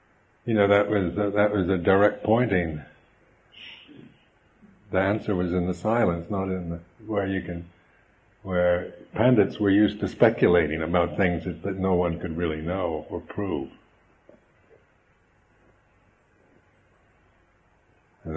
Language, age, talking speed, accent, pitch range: English, 60-79, 130 wpm, American, 90-110 Hz